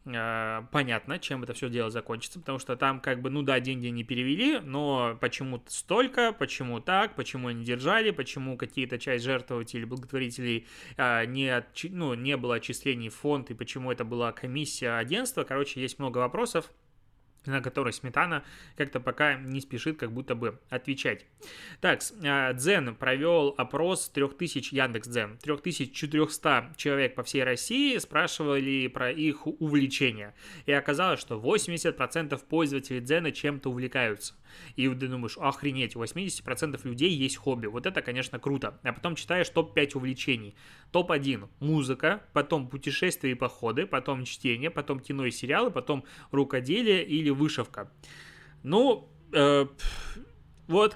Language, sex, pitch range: Russian, male, 125-150 Hz